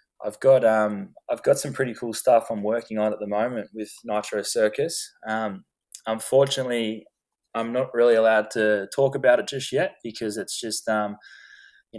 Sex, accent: male, Australian